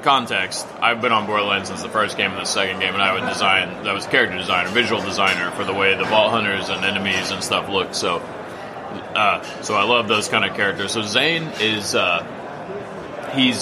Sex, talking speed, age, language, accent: male, 195 wpm, 30-49, German, American